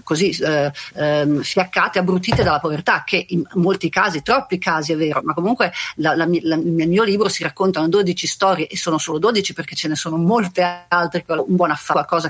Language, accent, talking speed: Italian, native, 200 wpm